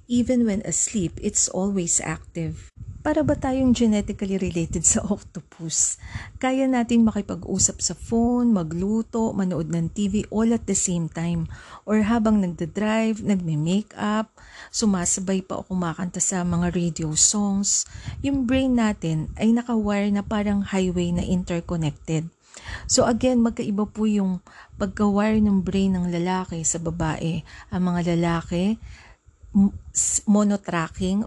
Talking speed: 125 wpm